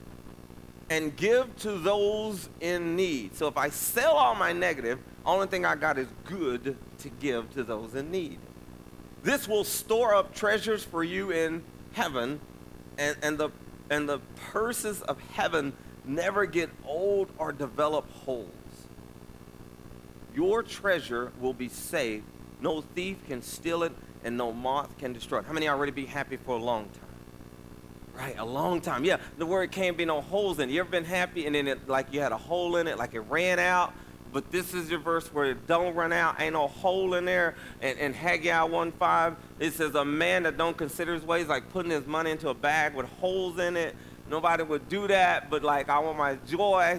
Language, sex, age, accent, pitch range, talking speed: English, male, 40-59, American, 130-180 Hz, 200 wpm